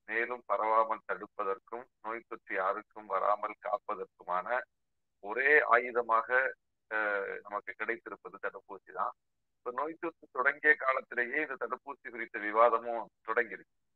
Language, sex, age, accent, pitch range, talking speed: Tamil, male, 40-59, native, 120-155 Hz, 100 wpm